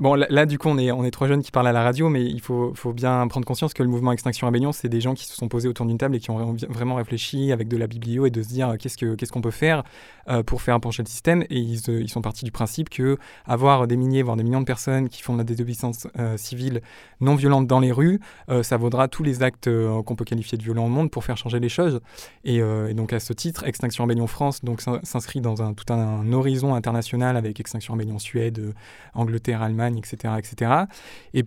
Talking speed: 265 wpm